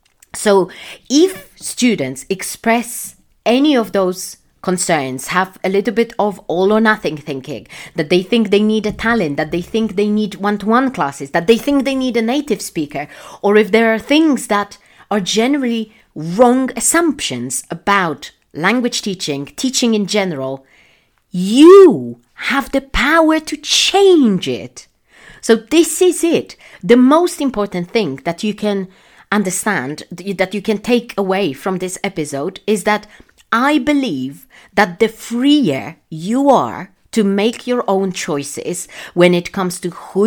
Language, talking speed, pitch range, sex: English, 150 wpm, 185-245 Hz, female